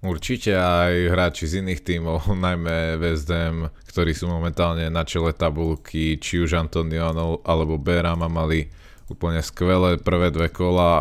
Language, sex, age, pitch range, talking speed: Slovak, male, 20-39, 85-95 Hz, 135 wpm